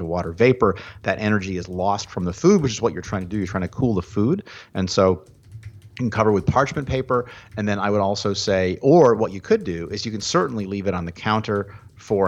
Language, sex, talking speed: English, male, 250 wpm